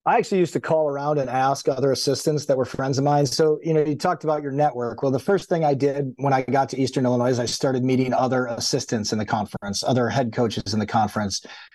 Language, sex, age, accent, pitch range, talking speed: English, male, 40-59, American, 125-155 Hz, 255 wpm